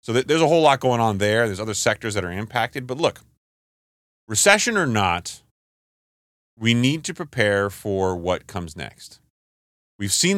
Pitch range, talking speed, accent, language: 90-125 Hz, 170 wpm, American, English